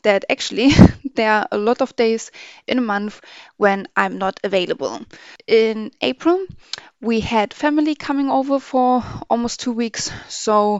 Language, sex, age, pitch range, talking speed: English, female, 20-39, 200-240 Hz, 150 wpm